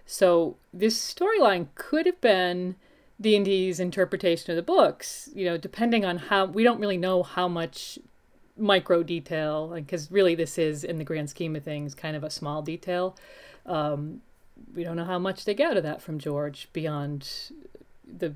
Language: English